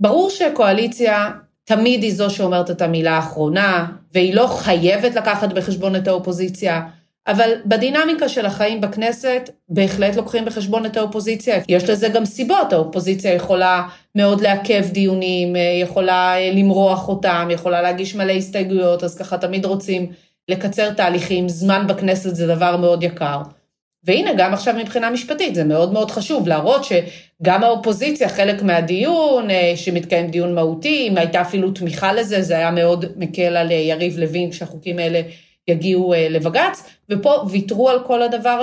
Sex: female